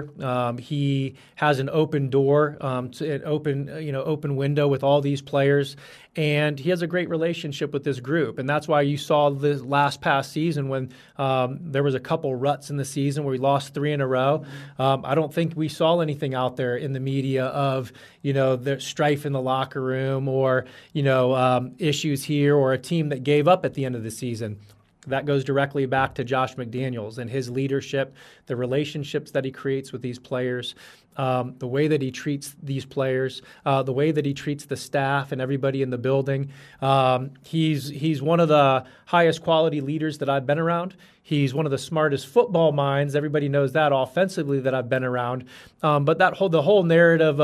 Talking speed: 210 wpm